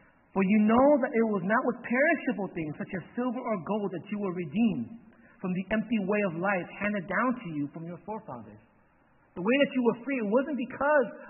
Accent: American